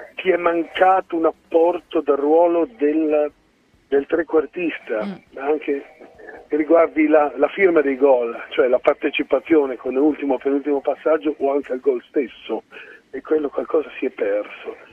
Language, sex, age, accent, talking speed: Italian, male, 40-59, native, 145 wpm